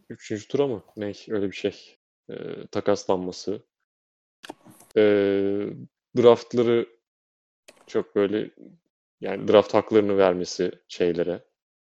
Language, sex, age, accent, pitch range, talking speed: Turkish, male, 30-49, native, 95-140 Hz, 90 wpm